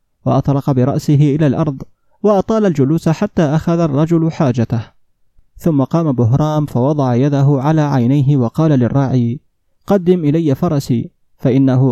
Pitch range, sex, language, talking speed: 130-170 Hz, male, Arabic, 115 wpm